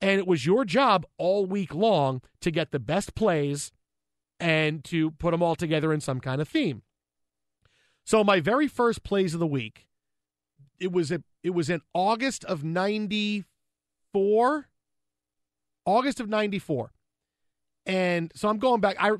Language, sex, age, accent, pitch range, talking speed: English, male, 40-59, American, 140-200 Hz, 155 wpm